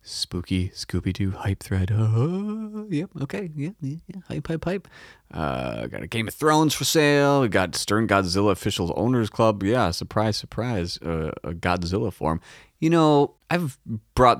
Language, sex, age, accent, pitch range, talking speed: English, male, 30-49, American, 90-135 Hz, 165 wpm